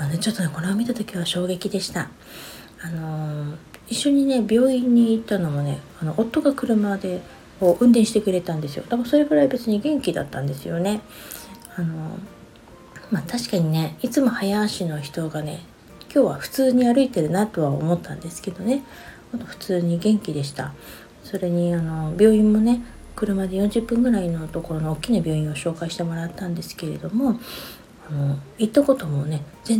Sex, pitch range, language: female, 155-205 Hz, Japanese